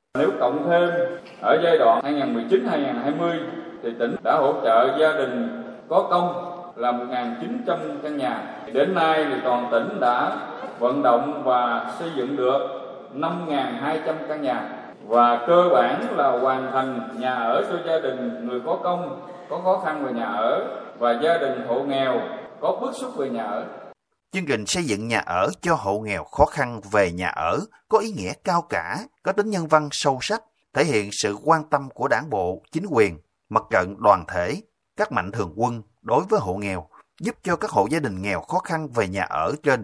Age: 20-39